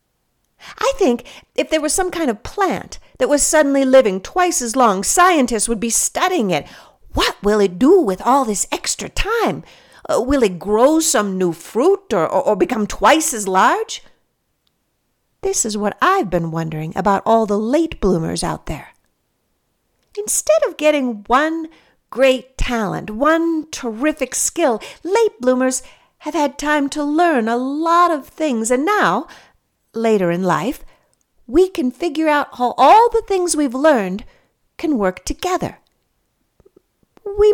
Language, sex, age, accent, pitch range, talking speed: English, female, 50-69, American, 215-325 Hz, 155 wpm